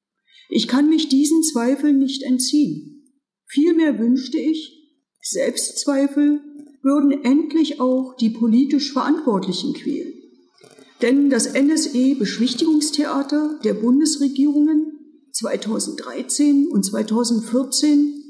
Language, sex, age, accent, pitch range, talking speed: German, female, 50-69, German, 250-295 Hz, 85 wpm